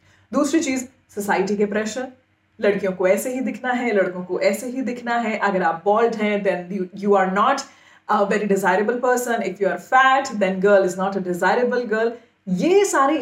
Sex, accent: female, native